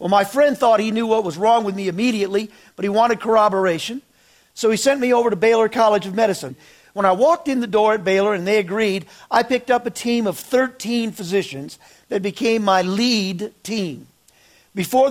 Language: English